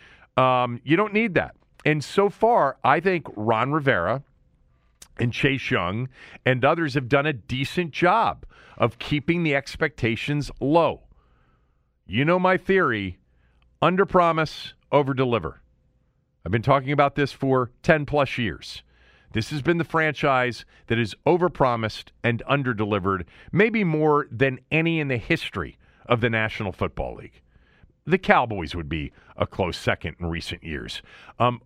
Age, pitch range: 40-59, 95-145 Hz